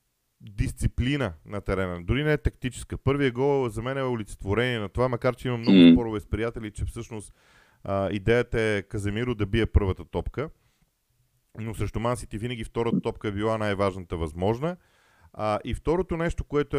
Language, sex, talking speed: Bulgarian, male, 165 wpm